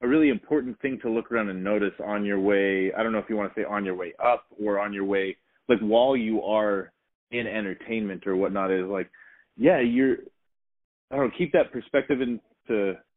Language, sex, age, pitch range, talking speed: English, male, 30-49, 100-115 Hz, 220 wpm